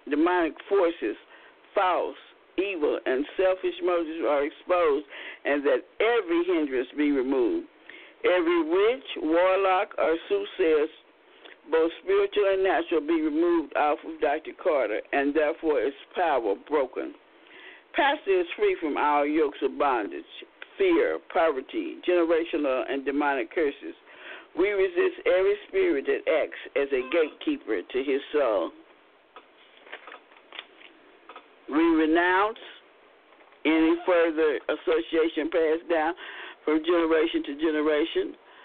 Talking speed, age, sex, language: 110 wpm, 50-69, male, English